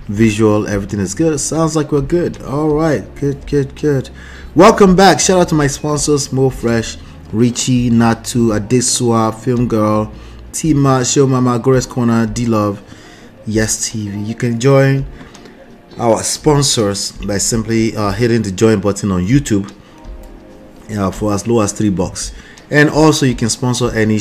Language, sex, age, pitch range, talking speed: English, male, 30-49, 105-130 Hz, 155 wpm